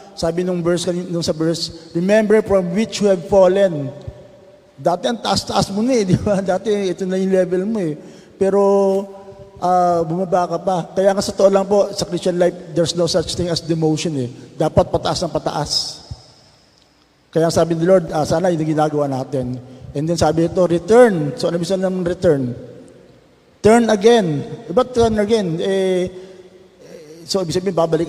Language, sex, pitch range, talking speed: Filipino, male, 155-190 Hz, 170 wpm